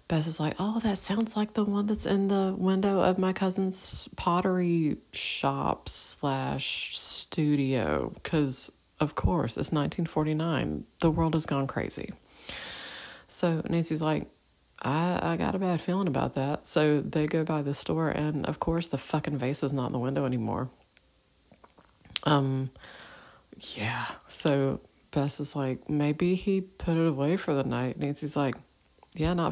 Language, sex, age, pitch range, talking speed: English, female, 30-49, 130-165 Hz, 155 wpm